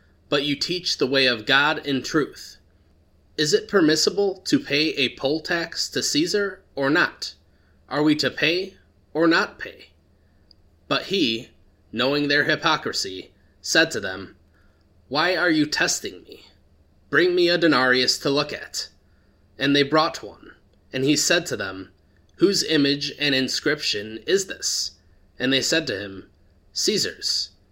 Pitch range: 95-155 Hz